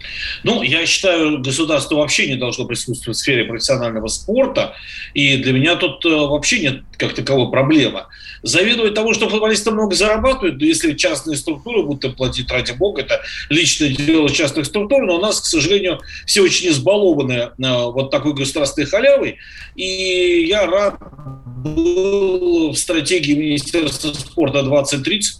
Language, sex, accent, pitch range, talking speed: Russian, male, native, 145-215 Hz, 145 wpm